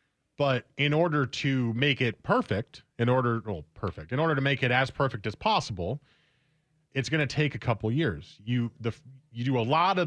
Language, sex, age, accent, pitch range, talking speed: English, male, 30-49, American, 110-145 Hz, 205 wpm